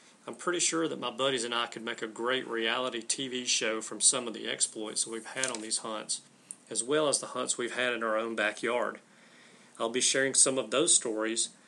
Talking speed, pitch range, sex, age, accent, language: 220 wpm, 120-155 Hz, male, 40-59, American, English